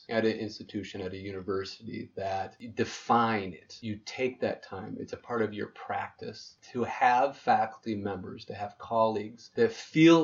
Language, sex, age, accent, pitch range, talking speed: English, male, 30-49, American, 105-120 Hz, 165 wpm